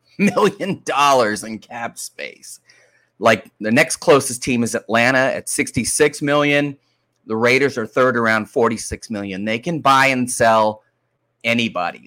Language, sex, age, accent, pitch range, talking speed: English, male, 30-49, American, 110-145 Hz, 140 wpm